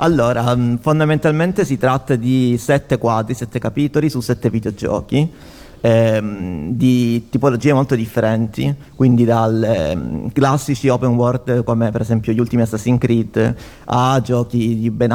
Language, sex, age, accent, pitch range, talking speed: Italian, male, 30-49, native, 115-145 Hz, 130 wpm